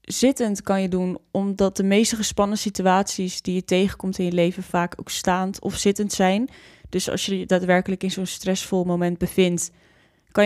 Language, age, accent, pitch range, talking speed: Dutch, 20-39, Dutch, 180-210 Hz, 185 wpm